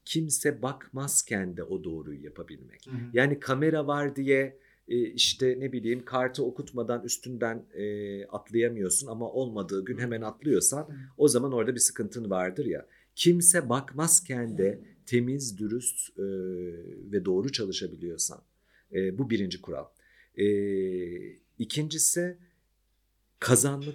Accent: native